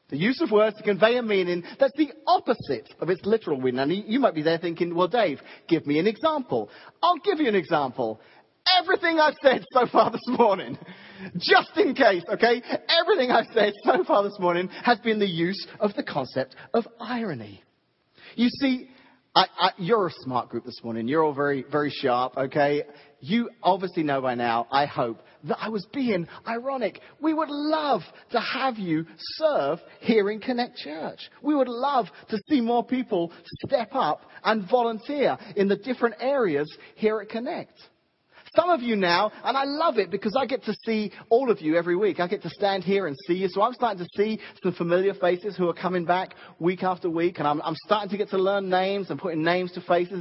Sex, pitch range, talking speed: male, 180-265 Hz, 205 wpm